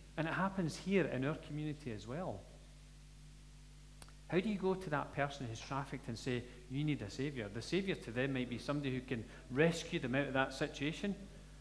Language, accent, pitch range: English, British, 140-205 Hz